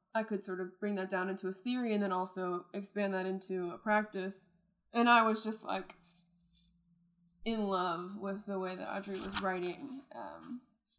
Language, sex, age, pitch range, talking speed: English, female, 20-39, 185-220 Hz, 180 wpm